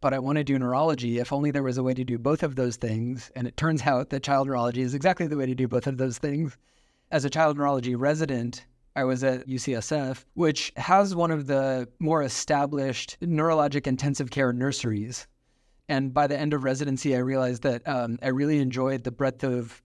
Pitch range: 125-145 Hz